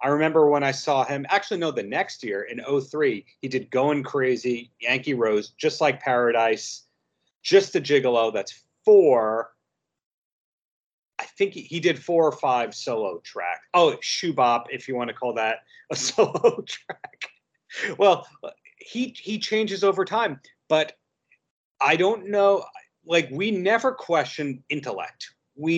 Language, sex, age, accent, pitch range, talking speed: English, male, 30-49, American, 130-190 Hz, 150 wpm